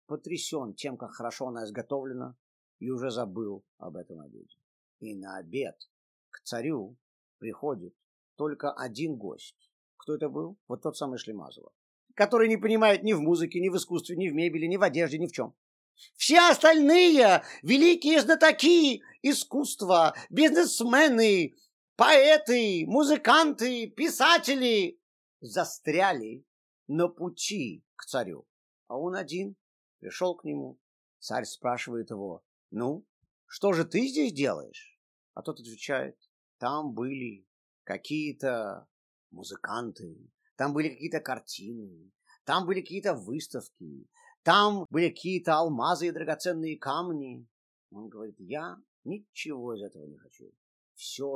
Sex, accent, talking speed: male, native, 125 wpm